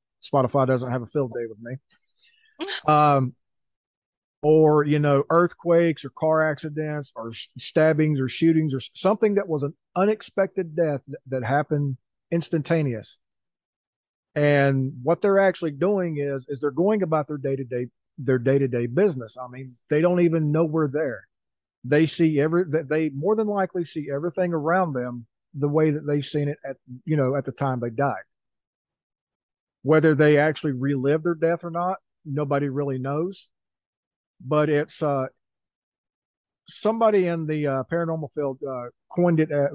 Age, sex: 40-59, male